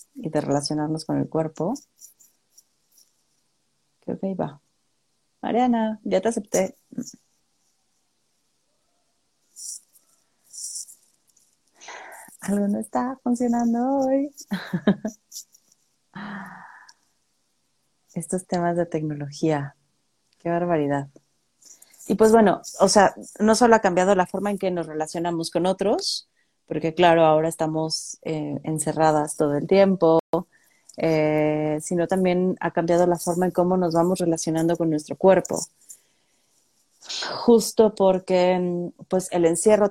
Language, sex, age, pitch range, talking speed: Spanish, female, 30-49, 160-205 Hz, 105 wpm